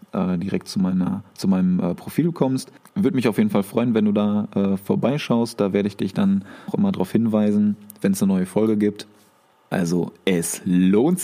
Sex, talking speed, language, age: male, 190 wpm, German, 20-39